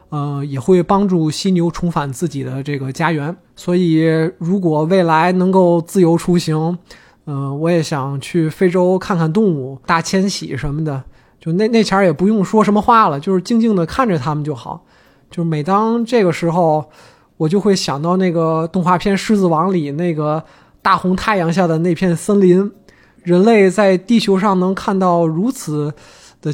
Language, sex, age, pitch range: Chinese, male, 20-39, 155-195 Hz